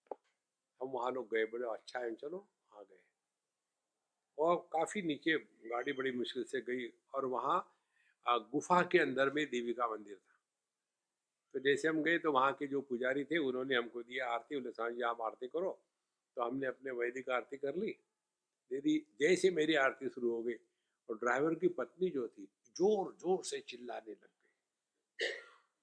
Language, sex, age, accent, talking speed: English, male, 60-79, Indian, 135 wpm